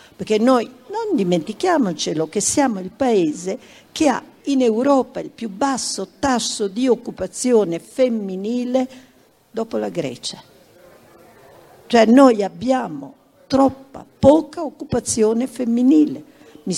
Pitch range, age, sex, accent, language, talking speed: 165-240 Hz, 50-69, female, native, Italian, 105 wpm